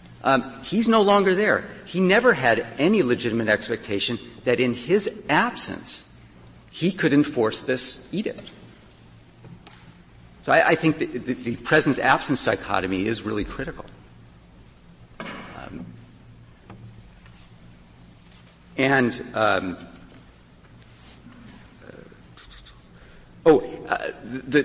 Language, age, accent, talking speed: English, 50-69, American, 95 wpm